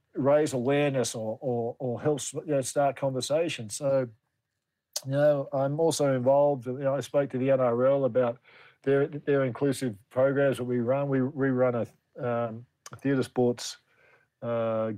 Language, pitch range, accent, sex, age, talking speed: English, 125-140 Hz, Australian, male, 50-69, 160 wpm